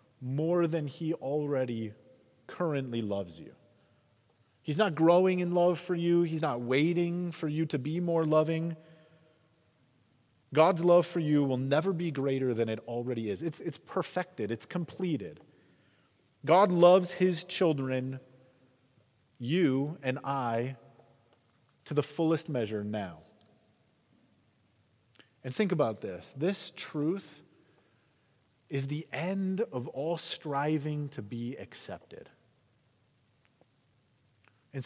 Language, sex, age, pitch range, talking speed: English, male, 30-49, 120-165 Hz, 115 wpm